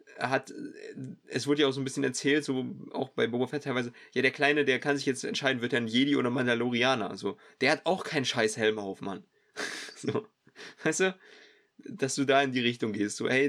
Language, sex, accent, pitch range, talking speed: German, male, German, 120-145 Hz, 225 wpm